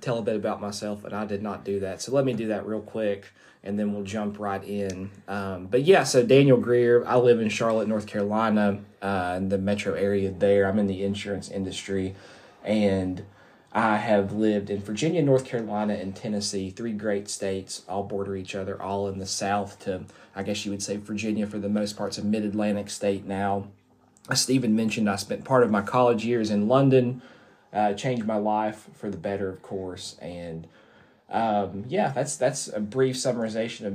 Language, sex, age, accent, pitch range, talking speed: English, male, 20-39, American, 100-110 Hz, 200 wpm